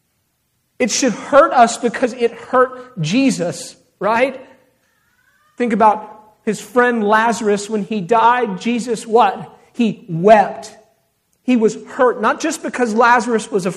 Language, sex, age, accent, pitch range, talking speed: English, male, 40-59, American, 210-260 Hz, 130 wpm